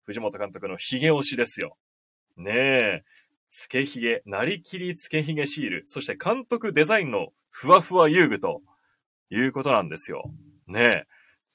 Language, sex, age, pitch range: Japanese, male, 20-39, 140-235 Hz